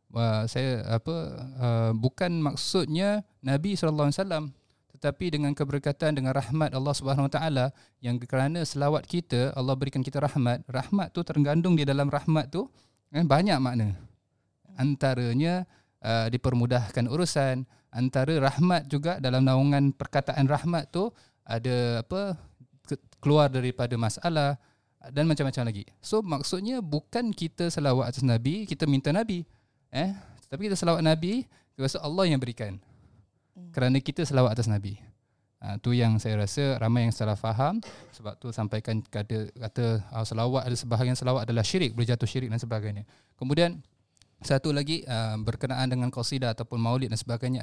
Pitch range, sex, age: 115-150 Hz, male, 20-39